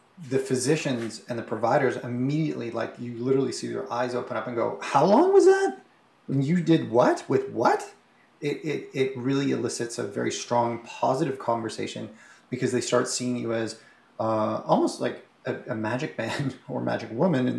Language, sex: English, male